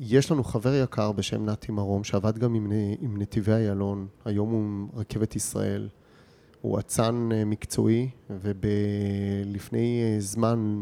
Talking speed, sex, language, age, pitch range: 130 wpm, male, Hebrew, 30-49, 105-120 Hz